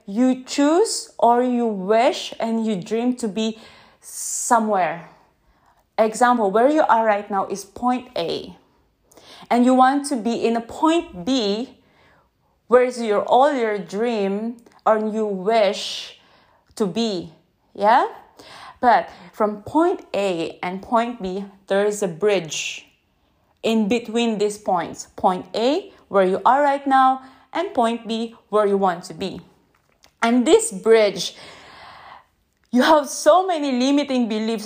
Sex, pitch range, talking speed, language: female, 200-255 Hz, 135 wpm, English